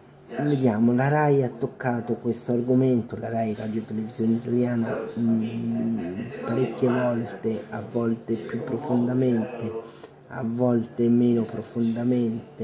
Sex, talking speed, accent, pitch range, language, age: male, 110 wpm, native, 105-120 Hz, Italian, 30-49